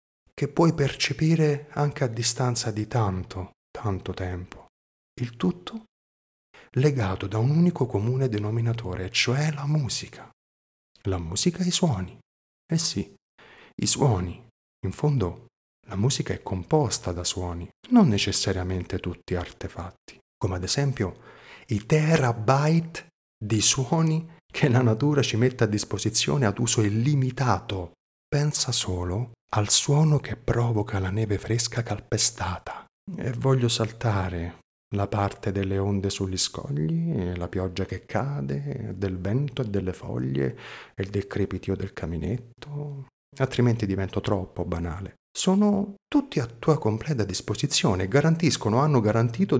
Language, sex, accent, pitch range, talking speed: Italian, male, native, 95-145 Hz, 125 wpm